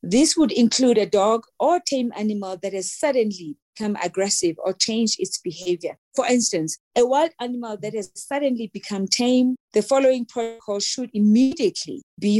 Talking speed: 160 wpm